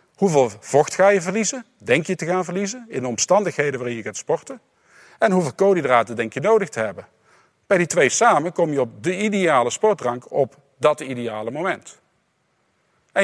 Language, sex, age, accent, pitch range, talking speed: Dutch, male, 50-69, Dutch, 130-190 Hz, 180 wpm